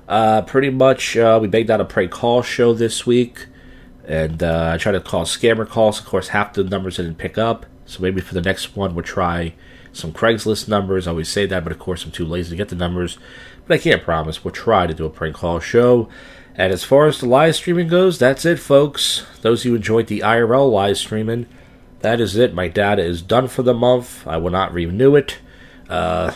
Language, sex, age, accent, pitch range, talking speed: English, male, 40-59, American, 85-115 Hz, 230 wpm